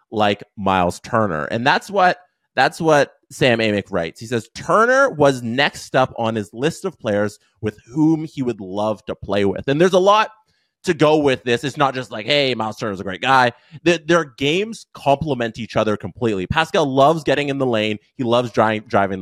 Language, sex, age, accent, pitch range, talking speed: English, male, 20-39, American, 110-160 Hz, 205 wpm